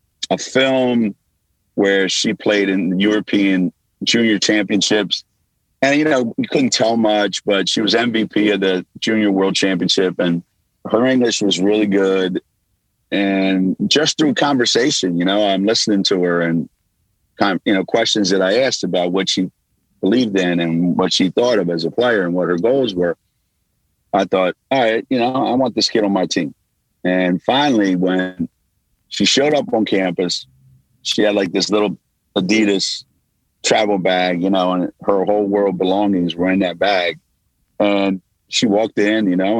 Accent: American